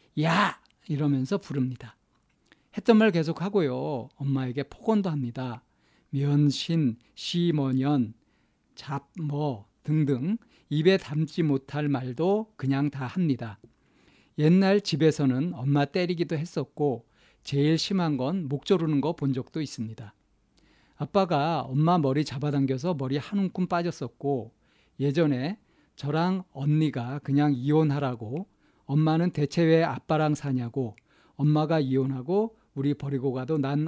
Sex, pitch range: male, 135-165 Hz